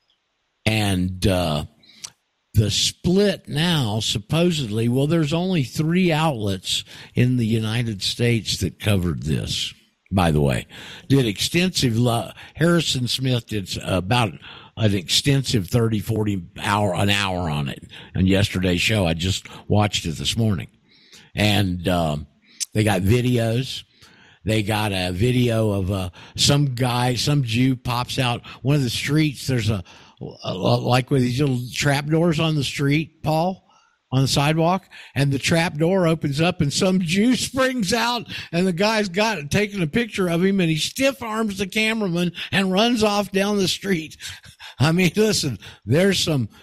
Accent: American